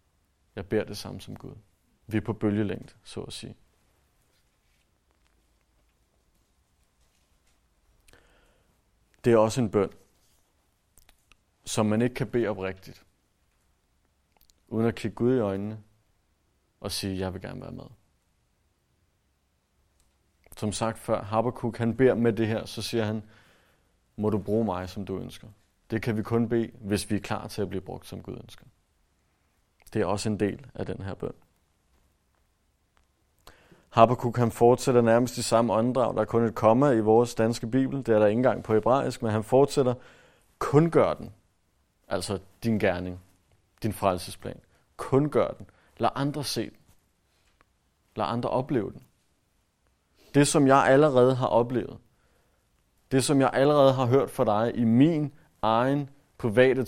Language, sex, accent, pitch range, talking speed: Danish, male, native, 90-120 Hz, 155 wpm